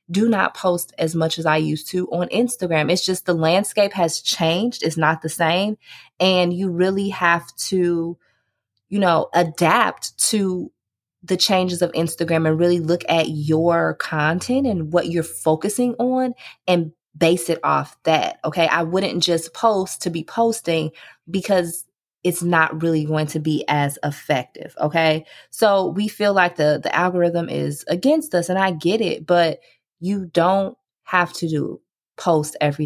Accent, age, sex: American, 20-39, female